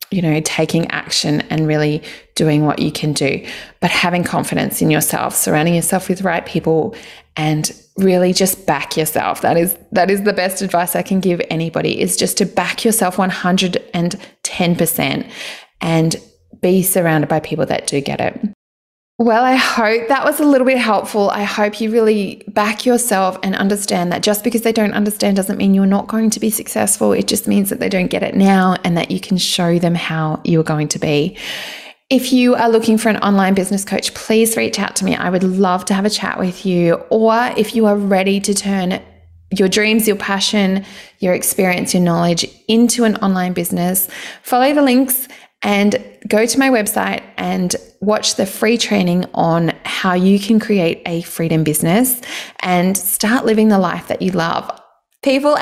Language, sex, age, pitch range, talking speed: English, female, 20-39, 180-220 Hz, 190 wpm